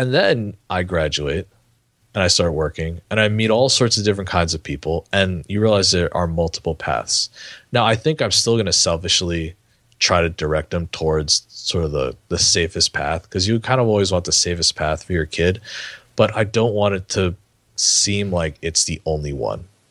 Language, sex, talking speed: English, male, 205 wpm